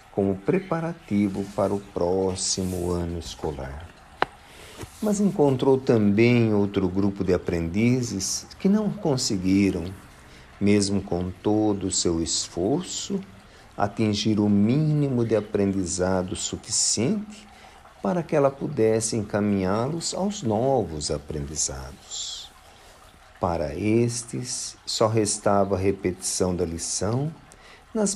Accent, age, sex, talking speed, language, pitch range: Brazilian, 50-69, male, 100 wpm, Portuguese, 90-120 Hz